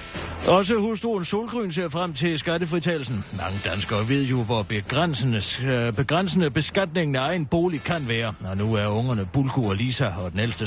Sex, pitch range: male, 100-165 Hz